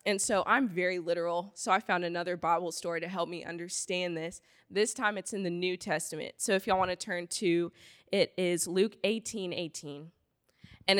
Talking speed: 195 wpm